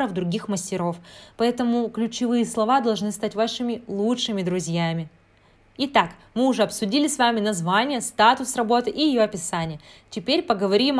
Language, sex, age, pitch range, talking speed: Russian, female, 20-39, 200-255 Hz, 130 wpm